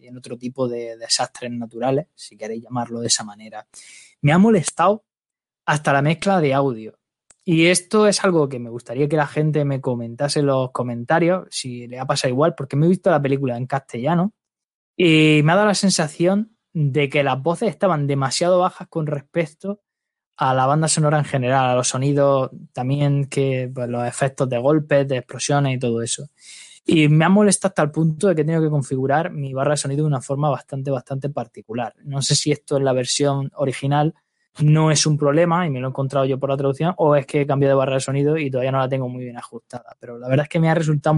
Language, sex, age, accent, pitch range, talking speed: Spanish, male, 20-39, Spanish, 130-165 Hz, 225 wpm